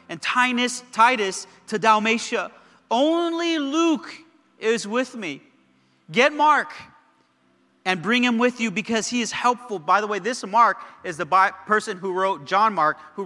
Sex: male